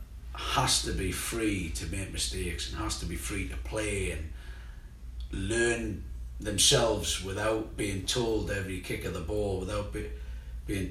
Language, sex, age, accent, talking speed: English, male, 40-59, British, 150 wpm